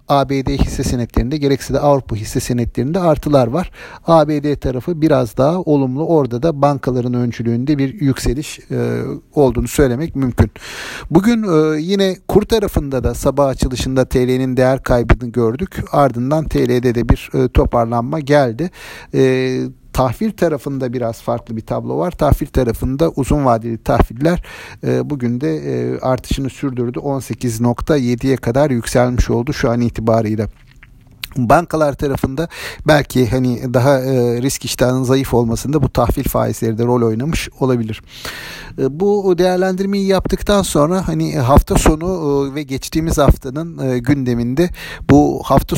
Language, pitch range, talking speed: Turkish, 120-150 Hz, 120 wpm